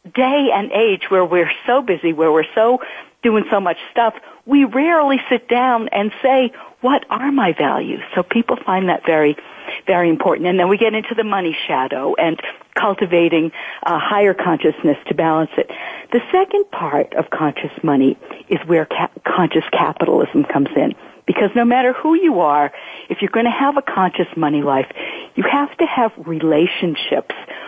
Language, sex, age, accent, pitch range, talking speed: English, female, 50-69, American, 160-245 Hz, 175 wpm